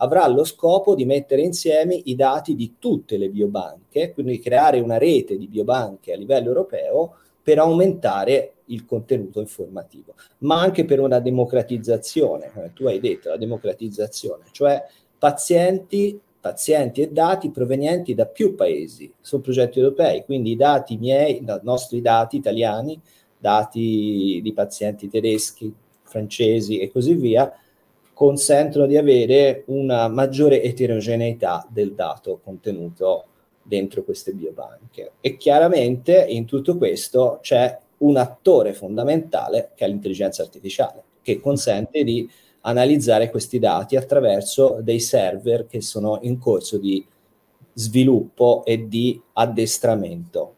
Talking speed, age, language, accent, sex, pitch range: 130 wpm, 40-59, Italian, native, male, 115-155 Hz